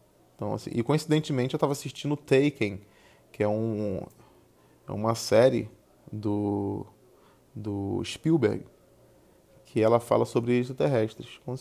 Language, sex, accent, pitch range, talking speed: Portuguese, male, Brazilian, 110-135 Hz, 115 wpm